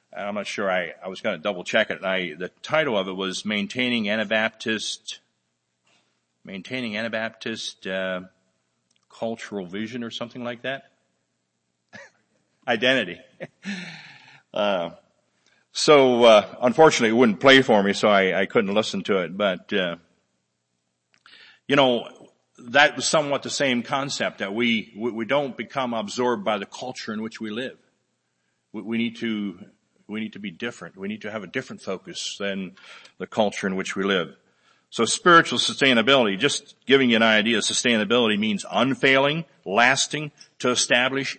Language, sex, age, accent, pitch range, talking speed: English, male, 50-69, American, 95-130 Hz, 155 wpm